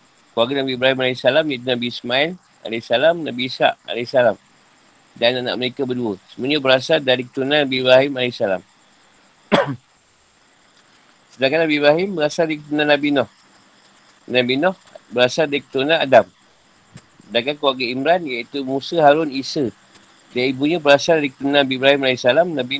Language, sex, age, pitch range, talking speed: Malay, male, 50-69, 125-145 Hz, 135 wpm